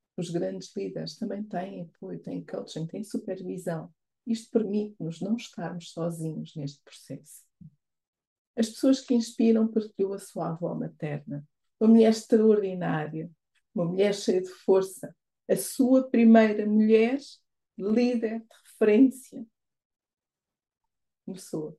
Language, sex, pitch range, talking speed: Portuguese, female, 165-225 Hz, 115 wpm